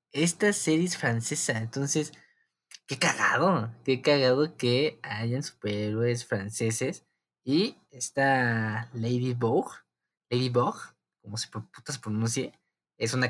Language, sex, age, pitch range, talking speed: Spanish, male, 20-39, 115-150 Hz, 105 wpm